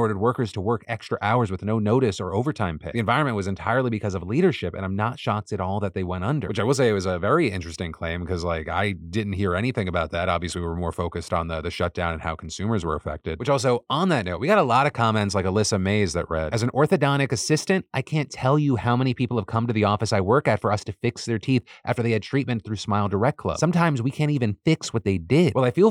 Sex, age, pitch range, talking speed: male, 30-49, 100-140 Hz, 280 wpm